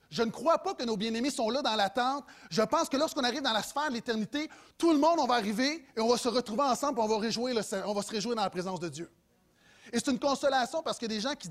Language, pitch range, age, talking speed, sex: French, 215-270 Hz, 30-49, 295 wpm, male